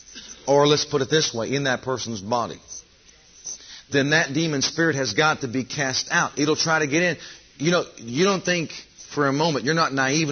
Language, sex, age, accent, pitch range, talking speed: English, male, 40-59, American, 130-155 Hz, 210 wpm